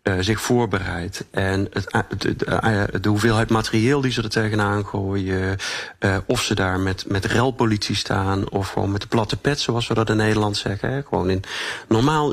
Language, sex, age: Dutch, male, 40-59